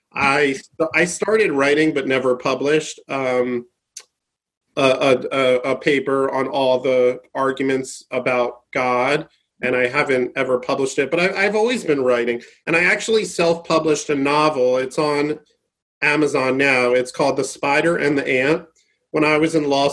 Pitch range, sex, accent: 135-170 Hz, male, American